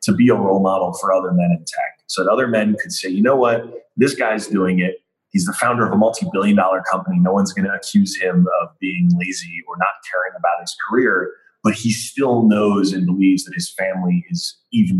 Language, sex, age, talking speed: English, male, 30-49, 225 wpm